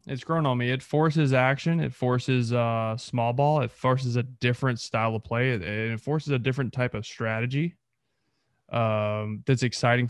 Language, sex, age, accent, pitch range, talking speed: English, male, 20-39, American, 110-140 Hz, 185 wpm